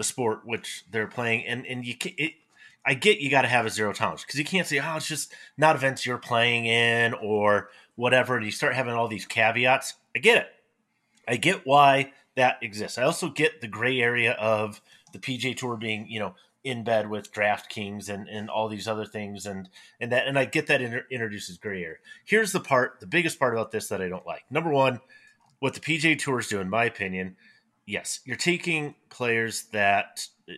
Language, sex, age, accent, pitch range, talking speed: English, male, 30-49, American, 110-145 Hz, 215 wpm